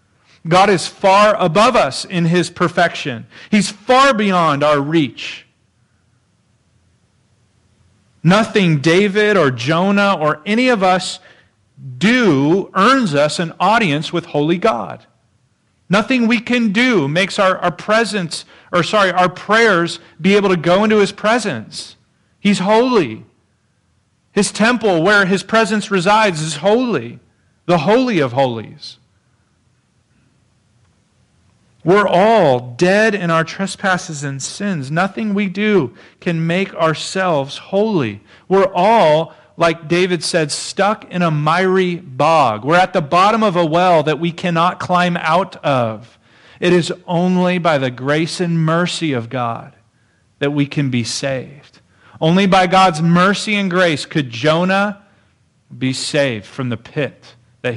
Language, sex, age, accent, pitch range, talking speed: English, male, 40-59, American, 140-195 Hz, 135 wpm